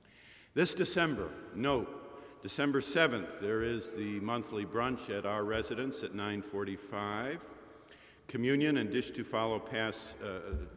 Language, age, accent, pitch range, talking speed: English, 50-69, American, 105-130 Hz, 125 wpm